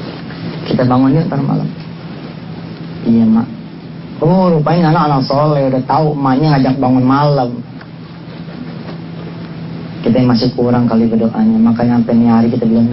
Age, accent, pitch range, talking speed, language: 30-49, Indonesian, 135-180 Hz, 125 wpm, English